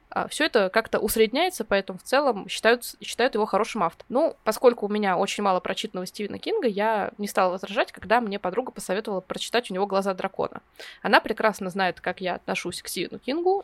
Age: 20-39